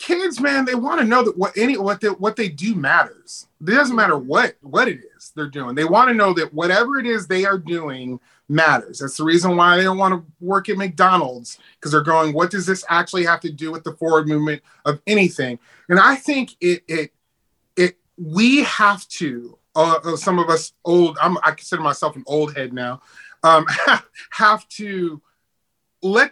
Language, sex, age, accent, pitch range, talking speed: English, male, 30-49, American, 160-215 Hz, 205 wpm